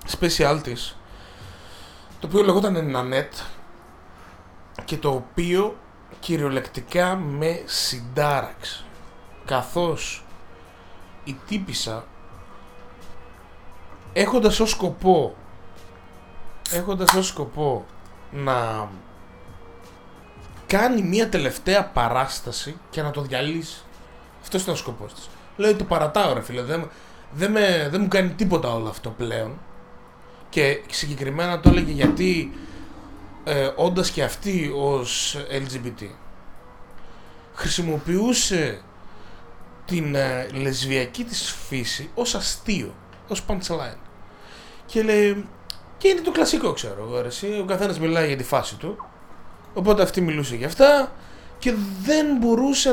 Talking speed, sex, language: 105 wpm, male, Greek